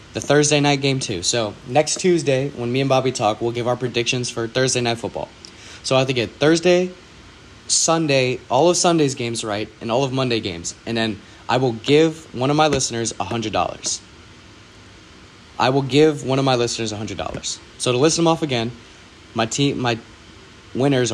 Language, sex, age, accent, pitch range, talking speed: English, male, 30-49, American, 110-135 Hz, 185 wpm